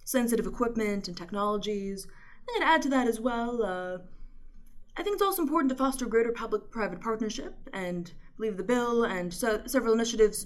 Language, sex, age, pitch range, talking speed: English, female, 20-39, 195-255 Hz, 170 wpm